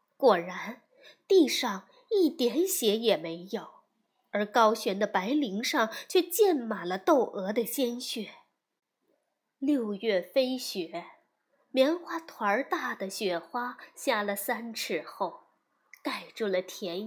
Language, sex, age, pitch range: Chinese, female, 20-39, 205-295 Hz